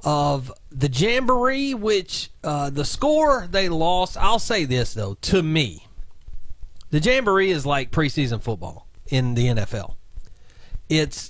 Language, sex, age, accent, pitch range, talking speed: English, male, 40-59, American, 120-160 Hz, 135 wpm